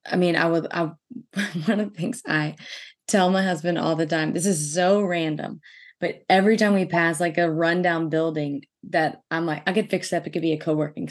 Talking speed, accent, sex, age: 230 wpm, American, female, 20-39